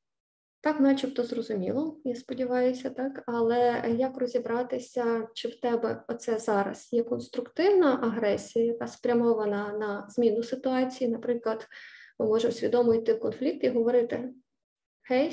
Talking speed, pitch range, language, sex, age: 120 wpm, 225-265 Hz, Ukrainian, female, 20-39